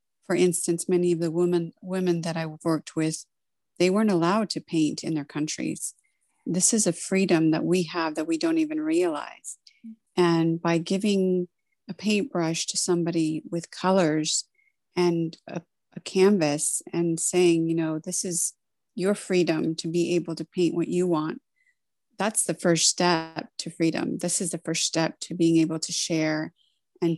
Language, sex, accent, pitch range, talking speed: English, female, American, 160-180 Hz, 170 wpm